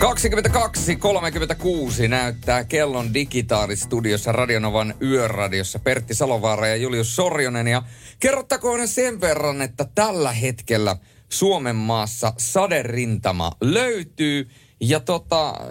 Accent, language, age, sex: native, Finnish, 30-49, male